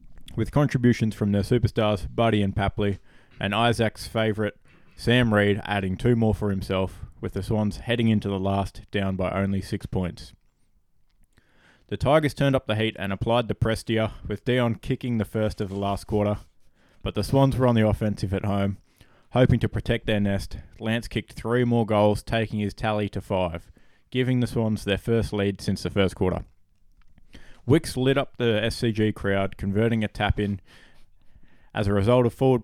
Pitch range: 100-115 Hz